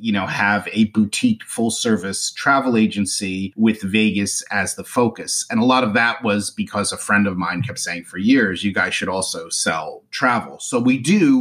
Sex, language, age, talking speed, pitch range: male, English, 30-49, 200 wpm, 95-130 Hz